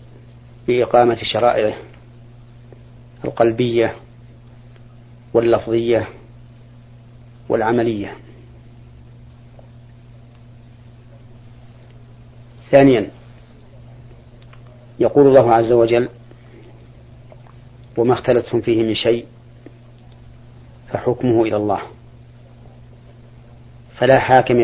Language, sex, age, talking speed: Arabic, male, 40-59, 50 wpm